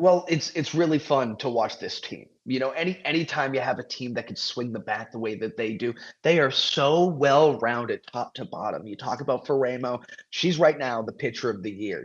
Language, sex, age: English, male, 30-49